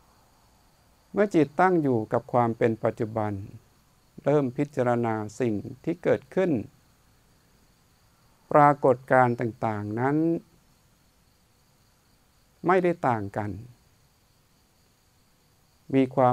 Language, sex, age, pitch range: Thai, male, 60-79, 110-145 Hz